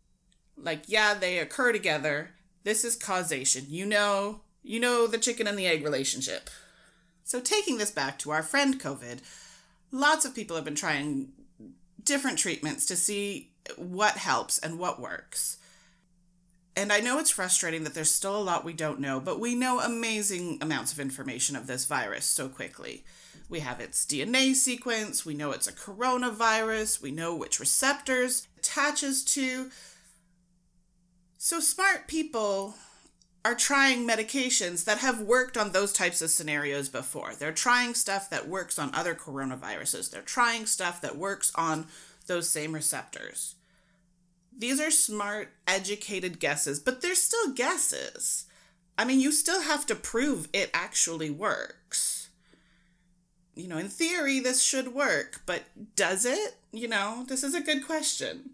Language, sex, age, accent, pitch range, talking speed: English, female, 30-49, American, 170-250 Hz, 155 wpm